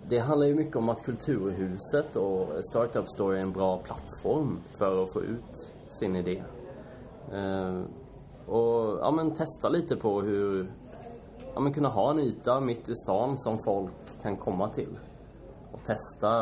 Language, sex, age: English, male, 20-39